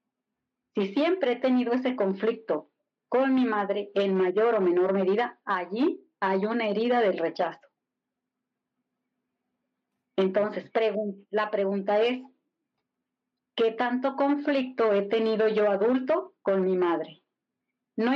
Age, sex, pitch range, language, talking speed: 40-59, female, 200-255 Hz, Spanish, 115 wpm